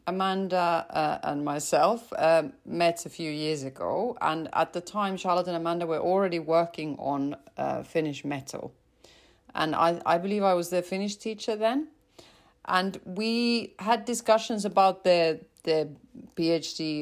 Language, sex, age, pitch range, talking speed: English, female, 40-59, 165-215 Hz, 150 wpm